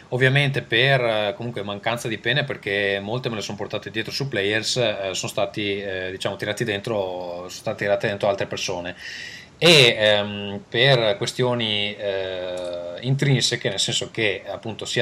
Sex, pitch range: male, 100-125 Hz